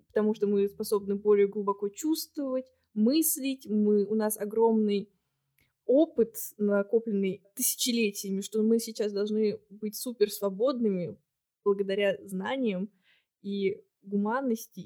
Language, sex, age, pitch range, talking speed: Russian, female, 20-39, 205-245 Hz, 100 wpm